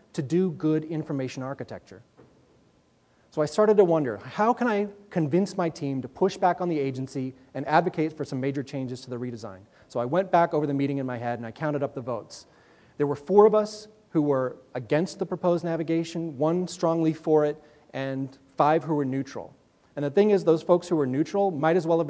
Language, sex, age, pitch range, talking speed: English, male, 30-49, 135-175 Hz, 215 wpm